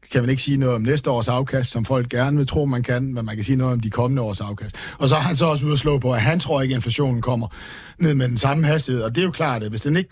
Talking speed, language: 340 wpm, Danish